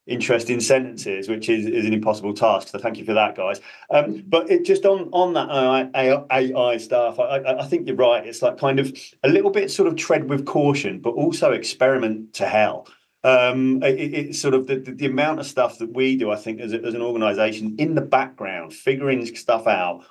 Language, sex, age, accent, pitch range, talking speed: English, male, 30-49, British, 110-135 Hz, 215 wpm